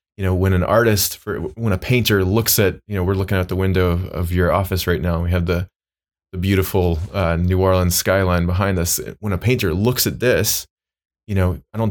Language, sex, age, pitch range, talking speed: English, male, 20-39, 85-100 Hz, 230 wpm